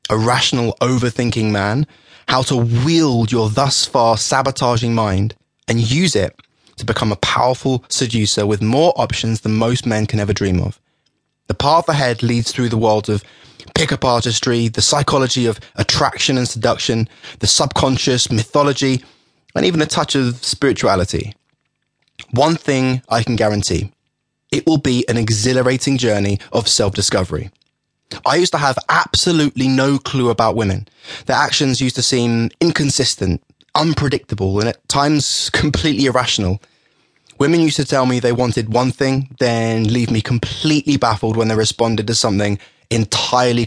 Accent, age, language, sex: British, 20-39, English, male